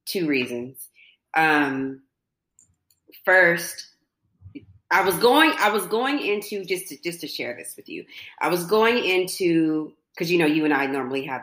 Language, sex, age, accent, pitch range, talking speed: English, female, 30-49, American, 130-180 Hz, 165 wpm